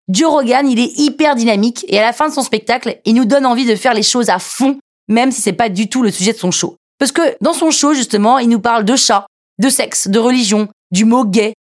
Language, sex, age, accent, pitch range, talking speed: French, female, 20-39, French, 220-275 Hz, 270 wpm